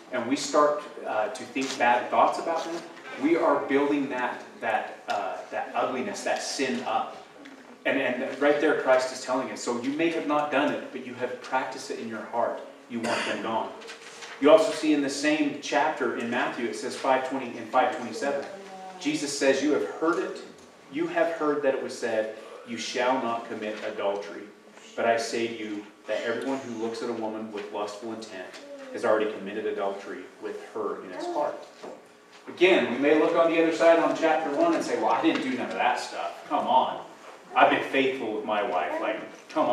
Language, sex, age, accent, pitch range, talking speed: English, male, 30-49, American, 115-165 Hz, 205 wpm